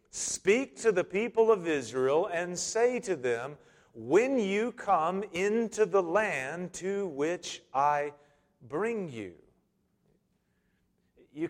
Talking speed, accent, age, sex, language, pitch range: 115 wpm, American, 40-59, male, English, 160-245 Hz